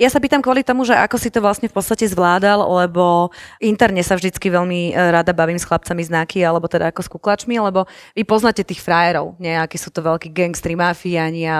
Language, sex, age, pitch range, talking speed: Slovak, female, 30-49, 170-205 Hz, 200 wpm